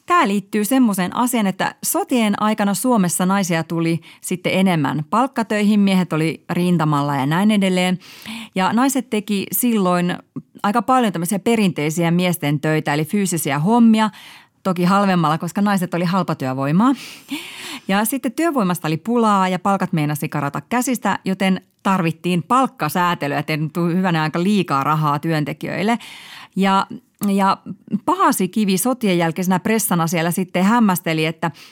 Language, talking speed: Finnish, 130 wpm